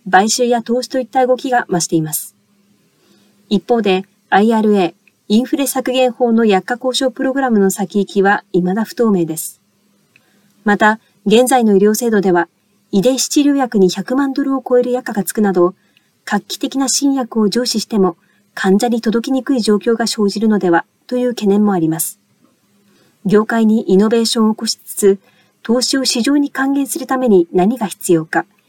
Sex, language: female, English